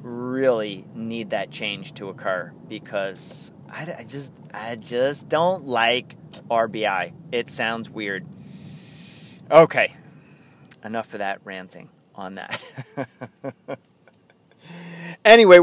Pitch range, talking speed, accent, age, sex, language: 150-245 Hz, 90 wpm, American, 30-49, male, English